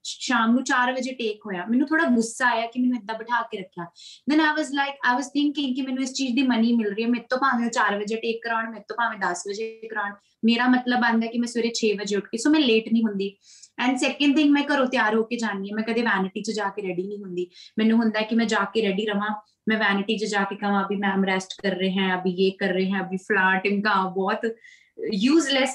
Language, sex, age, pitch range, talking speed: Punjabi, female, 20-39, 200-250 Hz, 225 wpm